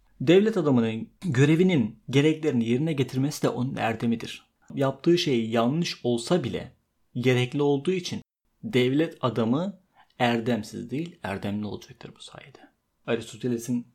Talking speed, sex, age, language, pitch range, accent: 110 wpm, male, 30-49, Turkish, 120-155 Hz, native